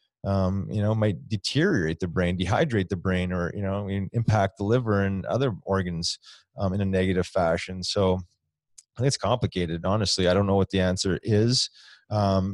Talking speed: 180 wpm